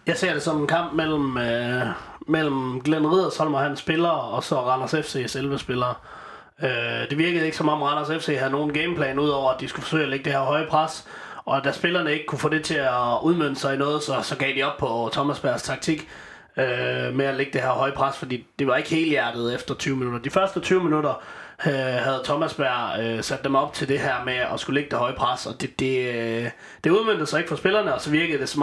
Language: Danish